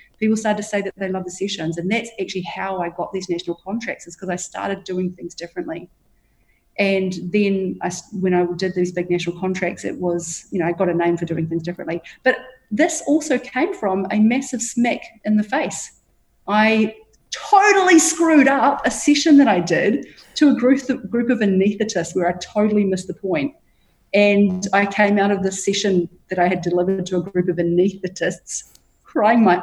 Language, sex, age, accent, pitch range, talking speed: English, female, 30-49, Australian, 180-220 Hz, 190 wpm